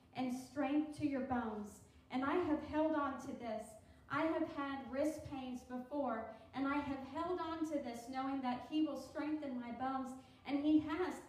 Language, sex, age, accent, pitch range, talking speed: English, female, 40-59, American, 255-305 Hz, 185 wpm